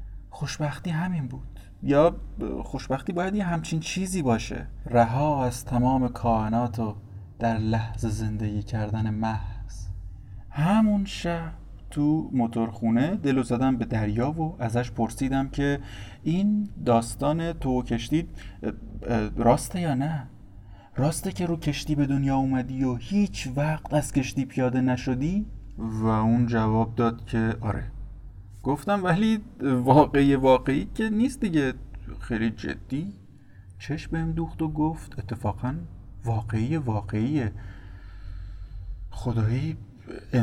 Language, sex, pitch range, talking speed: Persian, male, 110-145 Hz, 110 wpm